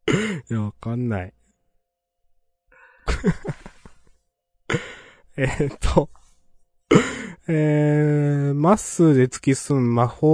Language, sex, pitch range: Japanese, male, 105-155 Hz